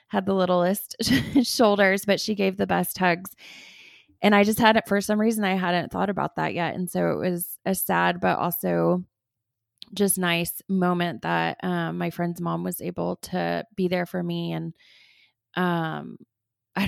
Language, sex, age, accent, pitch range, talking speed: English, female, 20-39, American, 165-190 Hz, 175 wpm